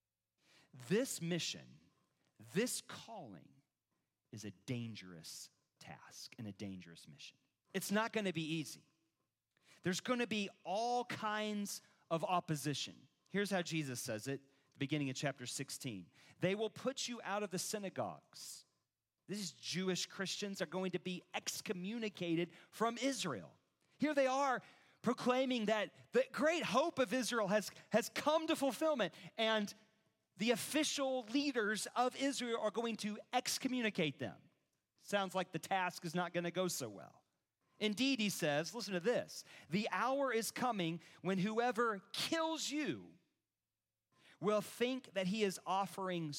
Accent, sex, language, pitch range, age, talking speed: American, male, English, 150-220 Hz, 40-59, 145 wpm